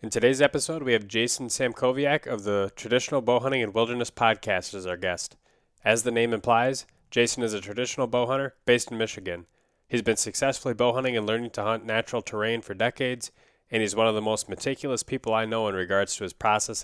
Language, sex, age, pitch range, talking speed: English, male, 20-39, 105-120 Hz, 200 wpm